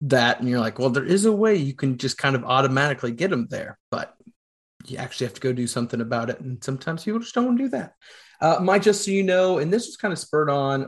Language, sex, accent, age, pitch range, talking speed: English, male, American, 30-49, 130-165 Hz, 275 wpm